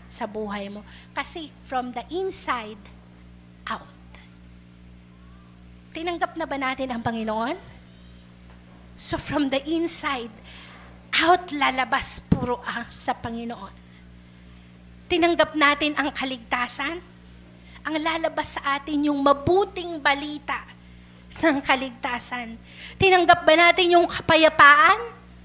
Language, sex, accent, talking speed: Filipino, female, native, 100 wpm